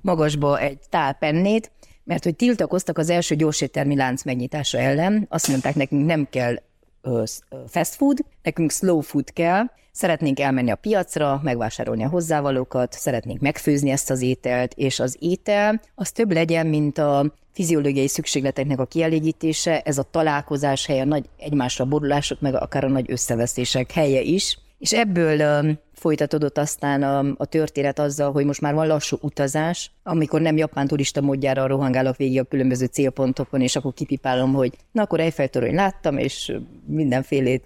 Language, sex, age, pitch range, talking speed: Hungarian, female, 30-49, 135-165 Hz, 150 wpm